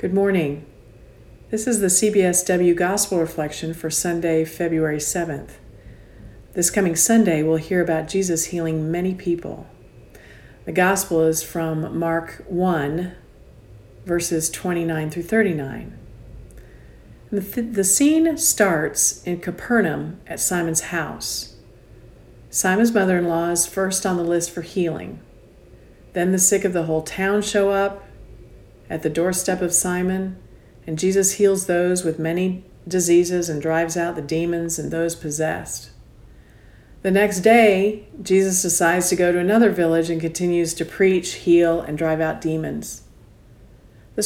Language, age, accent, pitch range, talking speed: English, 50-69, American, 160-190 Hz, 135 wpm